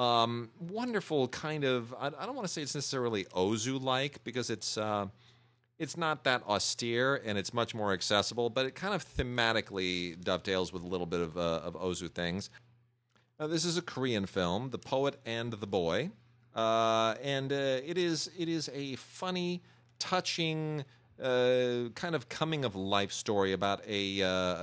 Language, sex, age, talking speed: English, male, 40-59, 170 wpm